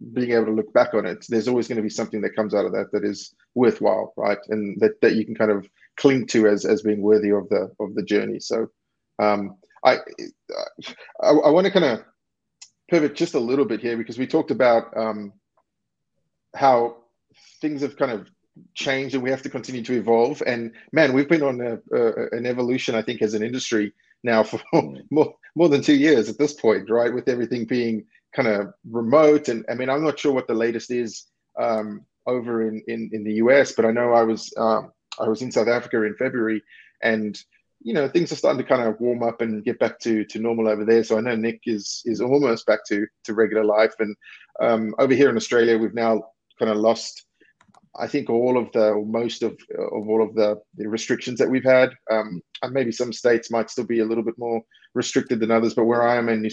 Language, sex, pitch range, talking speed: English, male, 110-125 Hz, 225 wpm